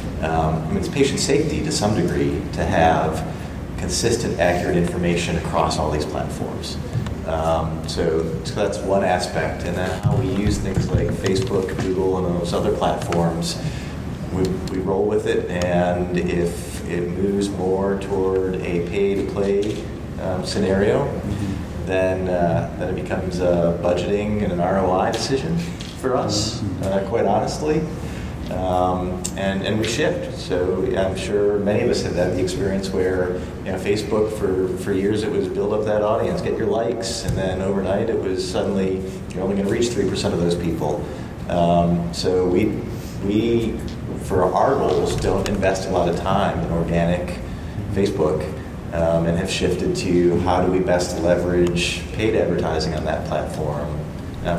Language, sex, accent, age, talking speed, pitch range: English, male, American, 30-49, 160 wpm, 85-95 Hz